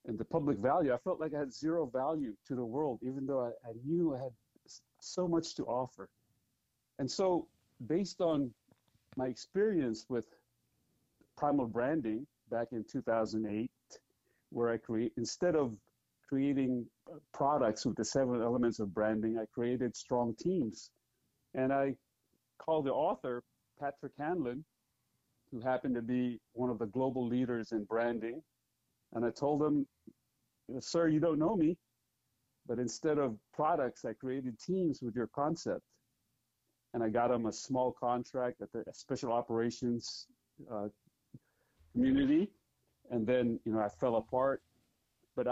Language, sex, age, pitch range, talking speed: English, male, 50-69, 115-140 Hz, 150 wpm